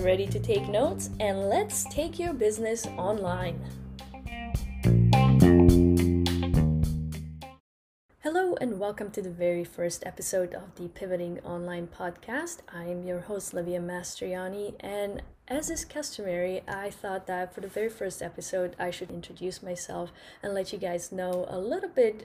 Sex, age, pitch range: female, 10-29, 175-210 Hz